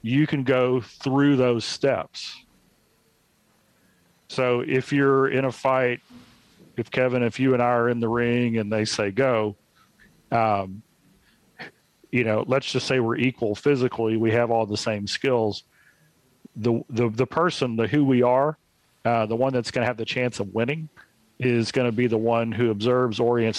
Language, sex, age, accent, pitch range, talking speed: English, male, 40-59, American, 115-135 Hz, 175 wpm